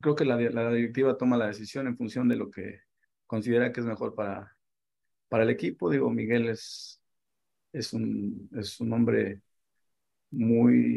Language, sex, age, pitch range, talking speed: Spanish, male, 50-69, 110-120 Hz, 160 wpm